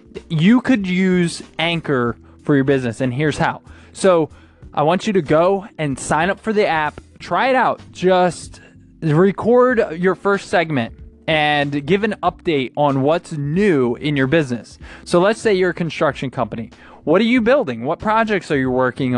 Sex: male